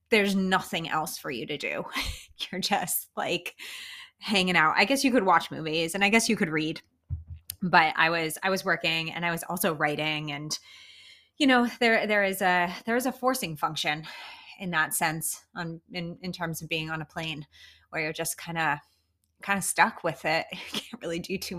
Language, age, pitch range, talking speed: English, 20-39, 165-200 Hz, 205 wpm